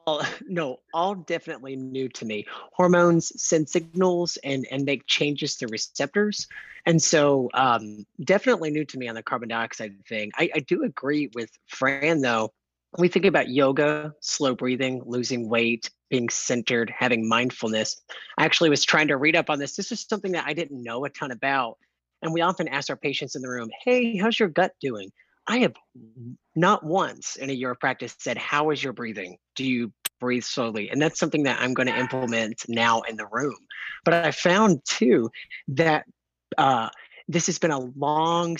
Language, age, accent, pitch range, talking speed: English, 30-49, American, 120-165 Hz, 190 wpm